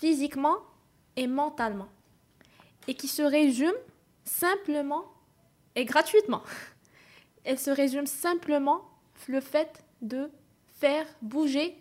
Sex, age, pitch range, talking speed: female, 20-39, 260-340 Hz, 95 wpm